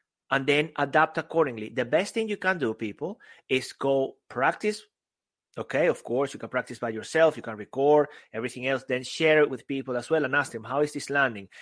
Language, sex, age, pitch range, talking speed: English, male, 30-49, 130-180 Hz, 210 wpm